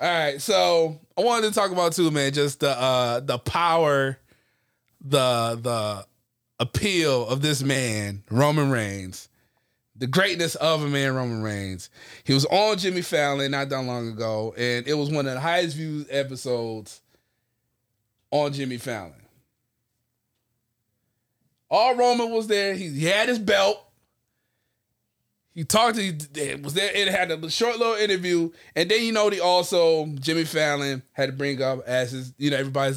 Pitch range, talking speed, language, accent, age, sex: 120-170 Hz, 160 wpm, English, American, 20-39, male